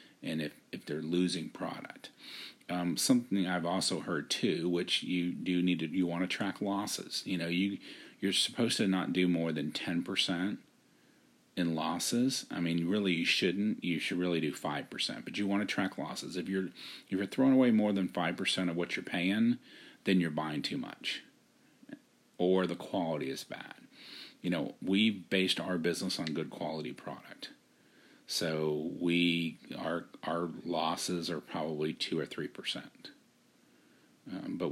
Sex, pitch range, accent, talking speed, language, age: male, 85-130 Hz, American, 170 wpm, English, 40-59